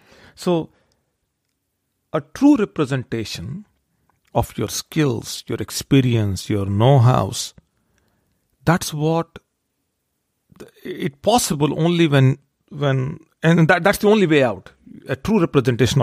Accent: Indian